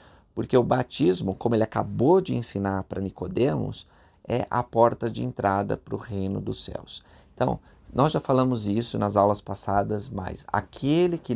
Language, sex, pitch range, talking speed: Portuguese, male, 105-125 Hz, 165 wpm